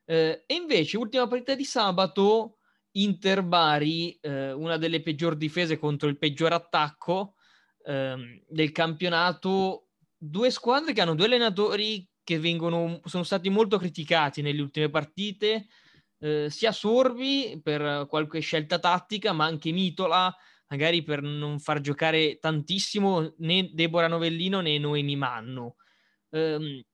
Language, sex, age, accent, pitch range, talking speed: Italian, male, 20-39, native, 150-190 Hz, 130 wpm